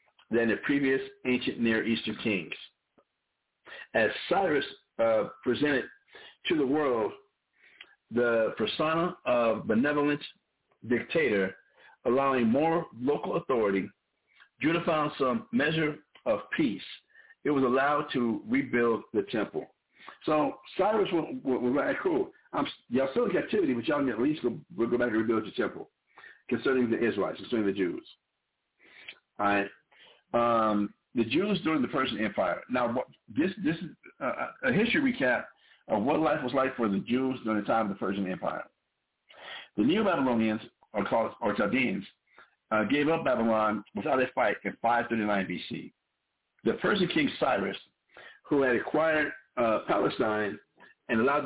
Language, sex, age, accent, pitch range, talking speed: English, male, 60-79, American, 110-160 Hz, 145 wpm